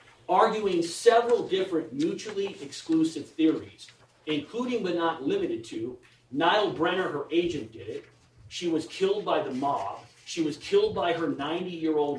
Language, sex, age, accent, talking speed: English, male, 40-59, American, 145 wpm